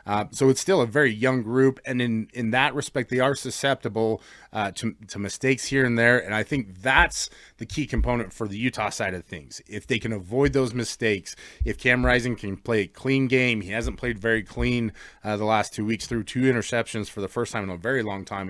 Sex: male